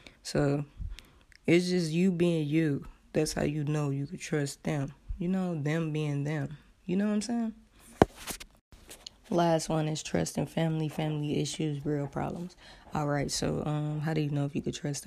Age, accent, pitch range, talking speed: 20-39, American, 145-170 Hz, 185 wpm